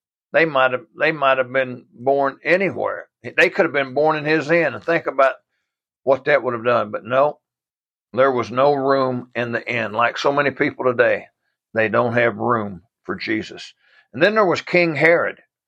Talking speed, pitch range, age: 195 wpm, 120-150 Hz, 60-79